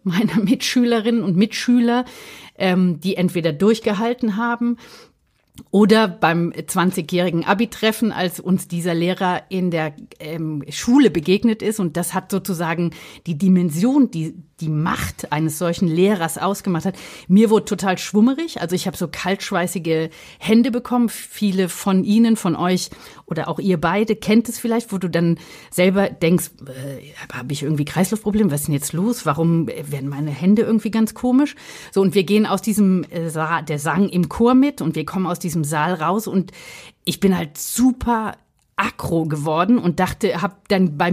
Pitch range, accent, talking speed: 170-225 Hz, German, 160 wpm